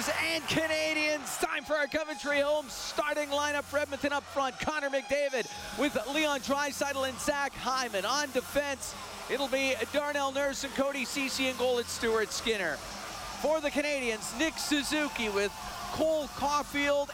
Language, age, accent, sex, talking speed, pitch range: English, 40-59, American, male, 150 wpm, 210-280 Hz